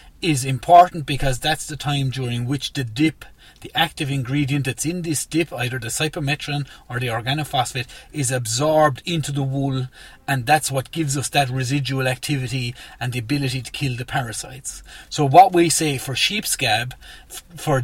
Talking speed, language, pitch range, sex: 170 wpm, English, 130-155 Hz, male